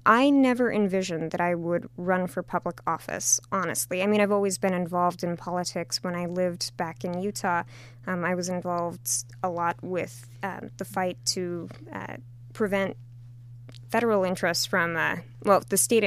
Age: 20-39